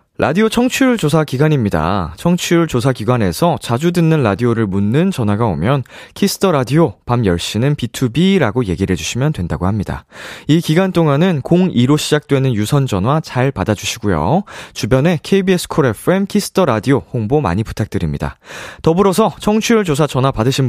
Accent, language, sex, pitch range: native, Korean, male, 100-160 Hz